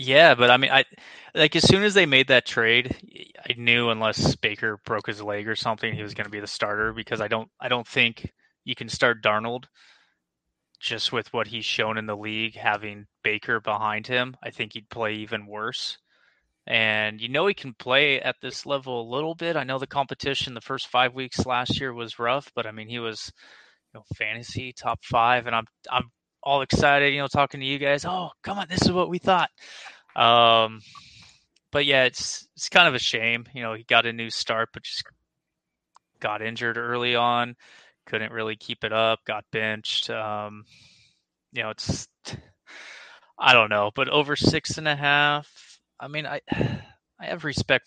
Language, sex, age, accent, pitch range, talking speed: English, male, 20-39, American, 110-135 Hz, 200 wpm